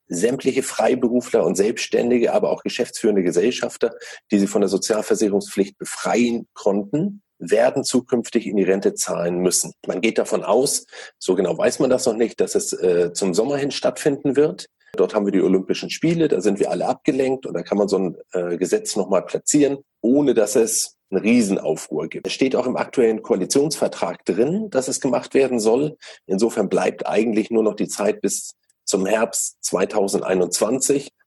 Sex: male